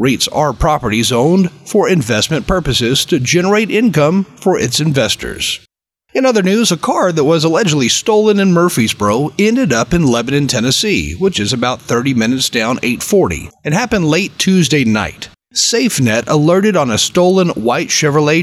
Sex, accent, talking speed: male, American, 160 wpm